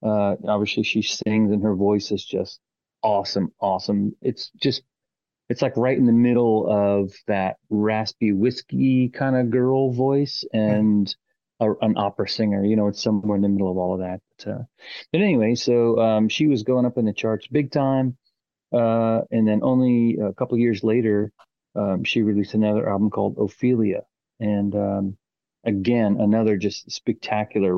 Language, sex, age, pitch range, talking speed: English, male, 30-49, 100-120 Hz, 170 wpm